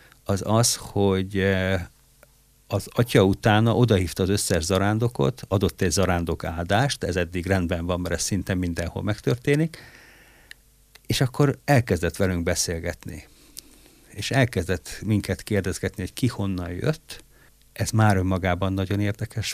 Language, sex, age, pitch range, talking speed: Hungarian, male, 60-79, 90-110 Hz, 125 wpm